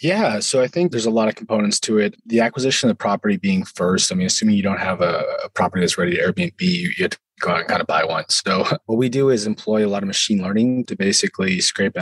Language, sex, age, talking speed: English, male, 20-39, 280 wpm